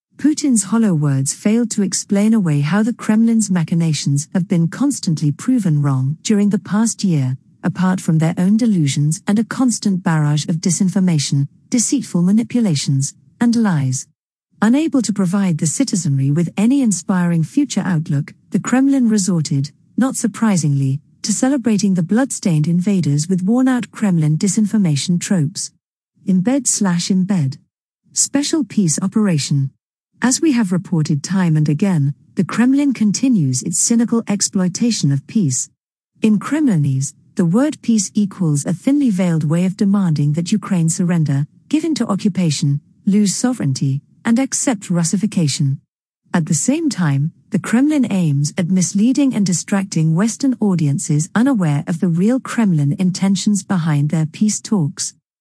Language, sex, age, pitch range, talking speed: English, female, 50-69, 155-220 Hz, 140 wpm